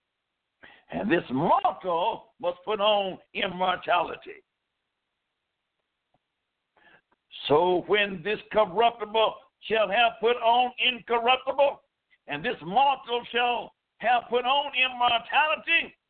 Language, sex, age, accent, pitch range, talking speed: English, male, 60-79, American, 205-280 Hz, 90 wpm